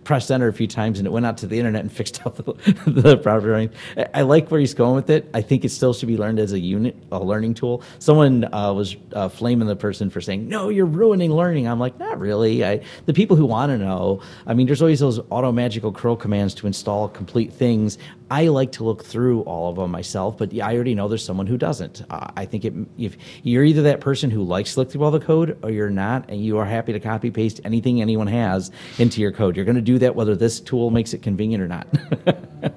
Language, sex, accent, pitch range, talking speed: English, male, American, 105-135 Hz, 255 wpm